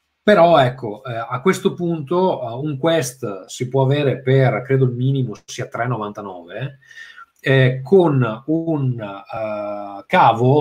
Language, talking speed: Italian, 130 wpm